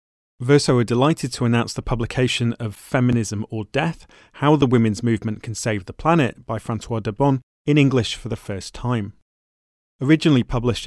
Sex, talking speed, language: male, 165 wpm, English